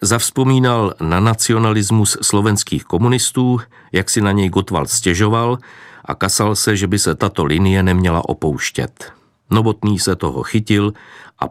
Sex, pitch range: male, 90-110 Hz